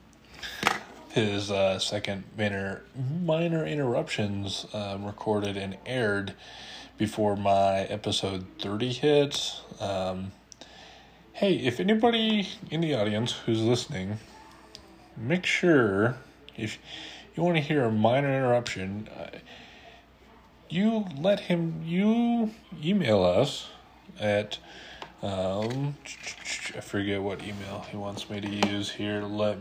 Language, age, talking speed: English, 20-39, 105 wpm